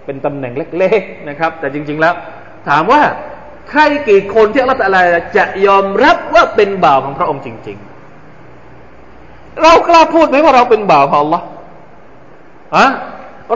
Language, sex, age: Thai, male, 20-39